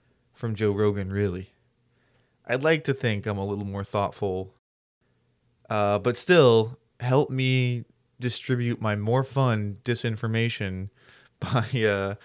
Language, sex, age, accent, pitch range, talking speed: English, male, 20-39, American, 105-125 Hz, 120 wpm